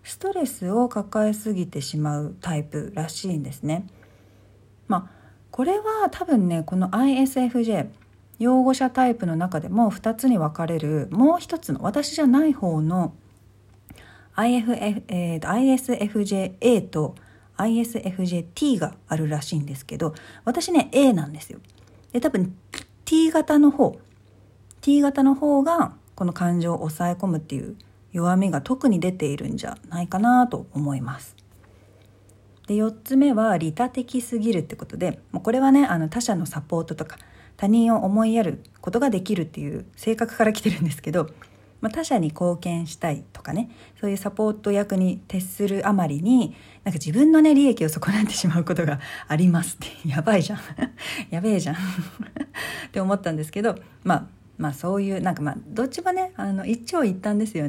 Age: 40-59